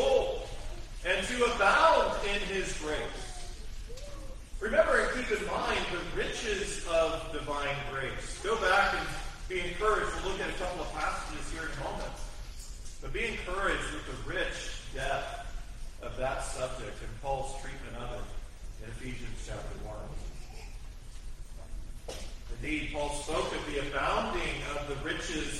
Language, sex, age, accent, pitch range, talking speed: English, male, 40-59, American, 125-200 Hz, 140 wpm